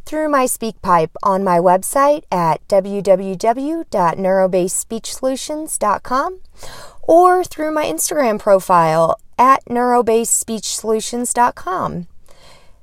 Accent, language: American, English